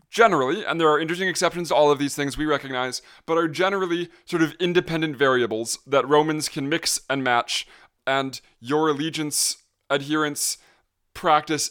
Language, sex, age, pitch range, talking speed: English, male, 20-39, 130-165 Hz, 160 wpm